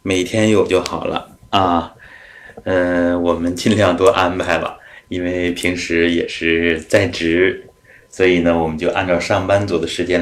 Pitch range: 85-105 Hz